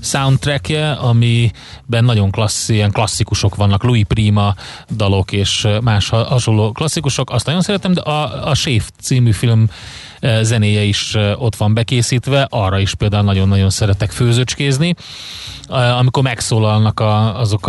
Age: 30-49